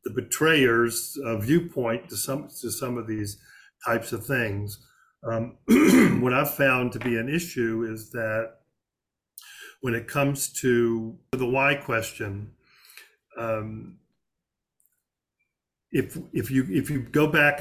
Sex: male